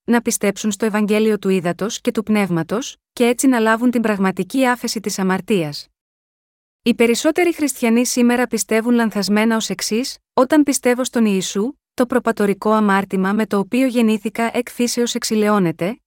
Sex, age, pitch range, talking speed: female, 30-49, 205-245 Hz, 150 wpm